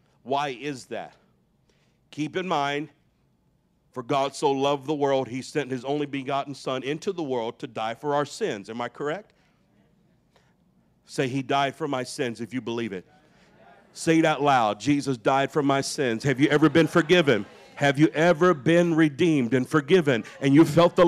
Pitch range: 140-180 Hz